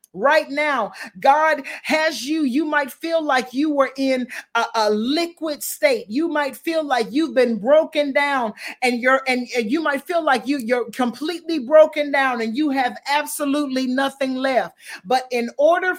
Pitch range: 240-310 Hz